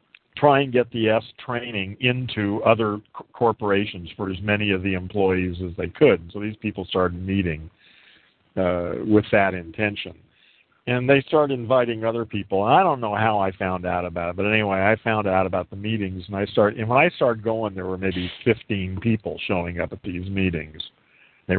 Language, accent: English, American